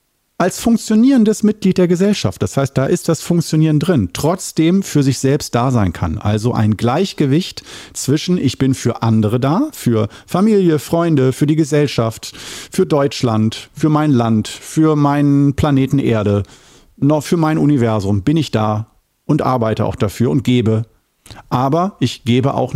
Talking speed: 160 wpm